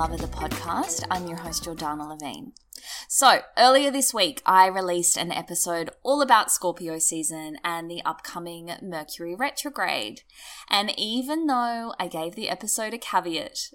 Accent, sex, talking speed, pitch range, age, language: Australian, female, 155 wpm, 170-240 Hz, 10-29, English